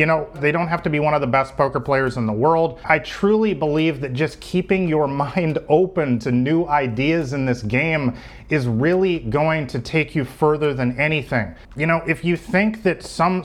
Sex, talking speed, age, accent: male, 210 wpm, 30-49, American